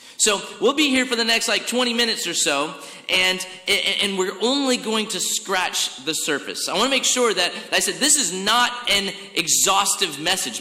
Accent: American